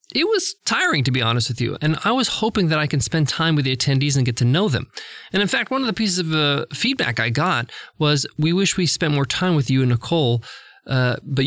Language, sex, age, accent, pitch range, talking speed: English, male, 20-39, American, 130-170 Hz, 260 wpm